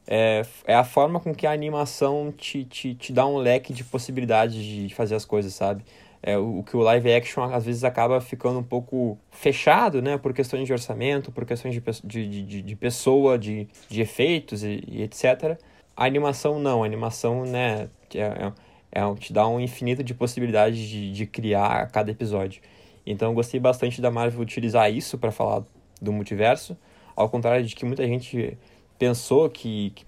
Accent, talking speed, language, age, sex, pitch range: Brazilian, 185 wpm, Portuguese, 20-39, male, 110-135 Hz